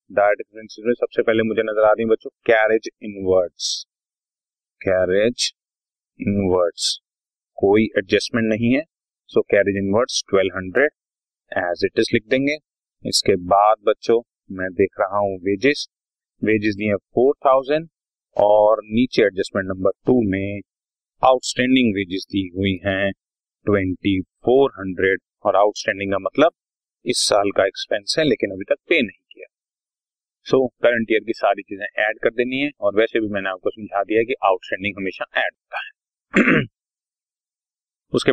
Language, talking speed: Hindi, 140 wpm